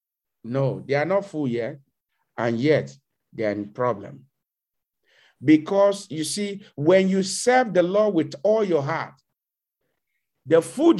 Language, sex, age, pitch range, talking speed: English, male, 50-69, 135-190 Hz, 140 wpm